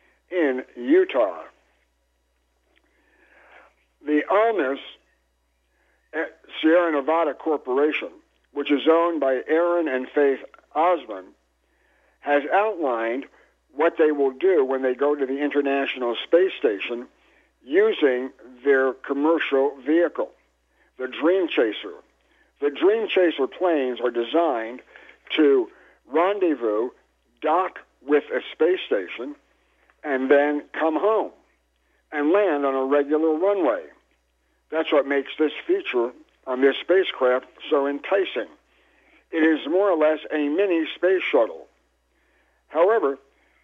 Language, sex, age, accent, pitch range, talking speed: English, male, 60-79, American, 130-175 Hz, 110 wpm